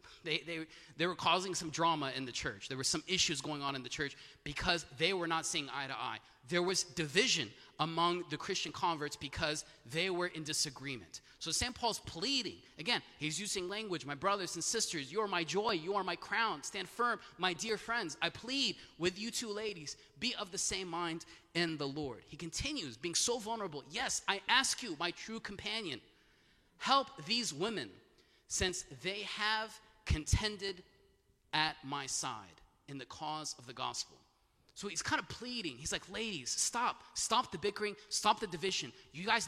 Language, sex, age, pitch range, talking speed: English, male, 30-49, 150-210 Hz, 185 wpm